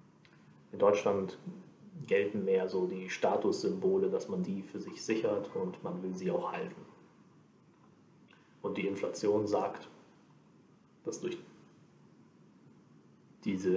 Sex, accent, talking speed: male, German, 115 wpm